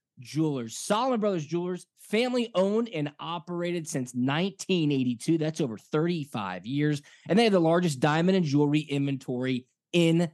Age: 20-39